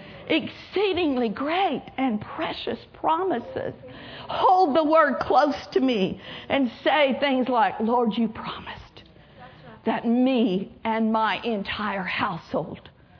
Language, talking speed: English, 110 wpm